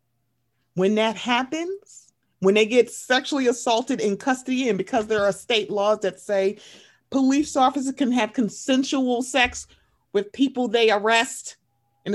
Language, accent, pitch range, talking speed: English, American, 175-255 Hz, 145 wpm